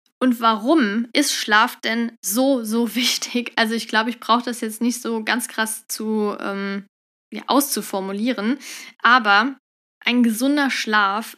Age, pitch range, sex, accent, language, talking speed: 10-29, 225-275 Hz, female, German, German, 140 wpm